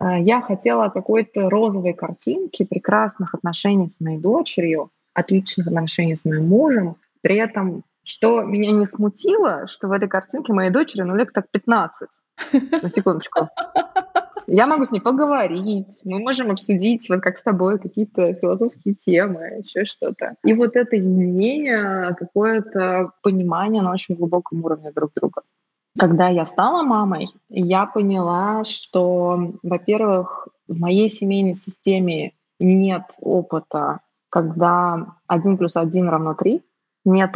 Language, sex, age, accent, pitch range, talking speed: Russian, female, 20-39, native, 175-210 Hz, 135 wpm